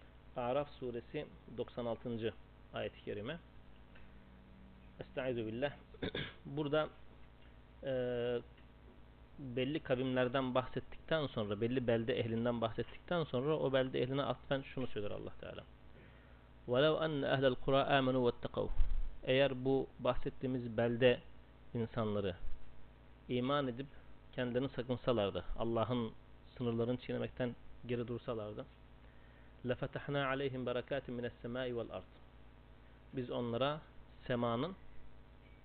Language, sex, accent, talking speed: Turkish, male, native, 85 wpm